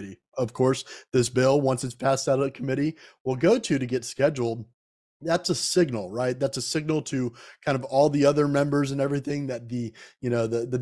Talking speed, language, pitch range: 215 wpm, English, 120-140 Hz